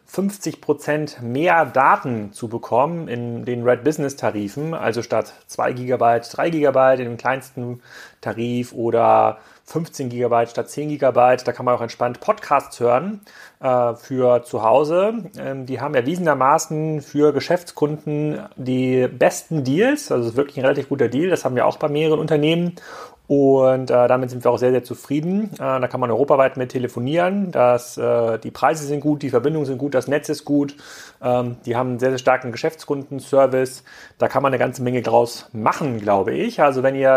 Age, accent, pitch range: 30-49, German, 120-150 Hz